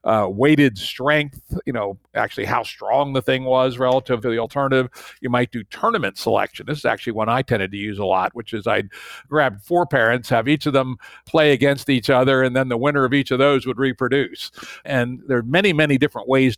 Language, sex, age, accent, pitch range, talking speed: English, male, 50-69, American, 110-140 Hz, 220 wpm